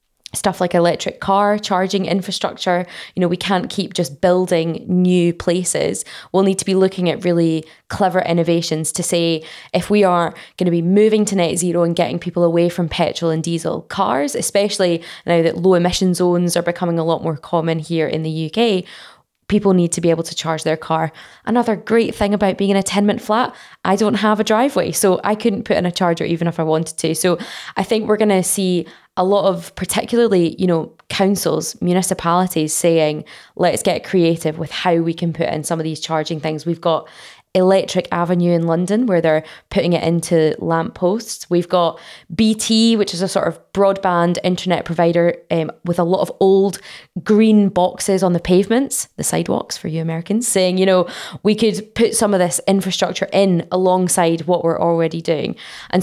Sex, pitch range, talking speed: female, 170-195 Hz, 195 wpm